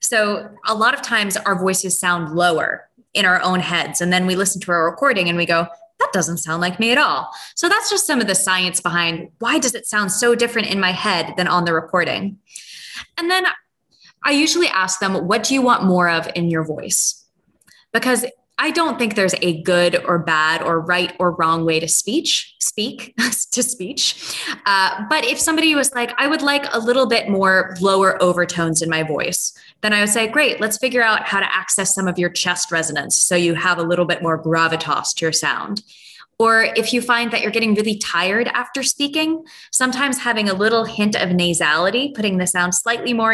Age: 20-39